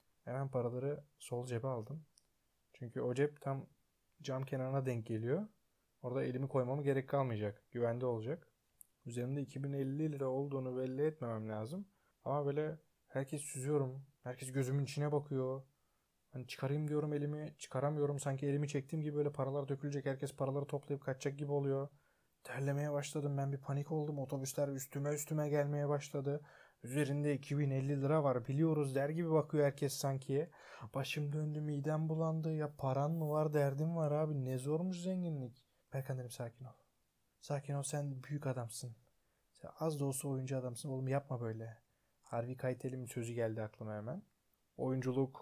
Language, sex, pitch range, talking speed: Turkish, male, 125-145 Hz, 150 wpm